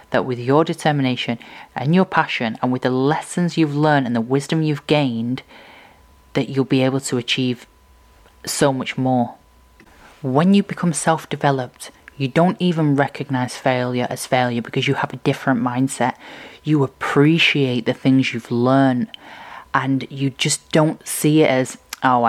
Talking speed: 155 wpm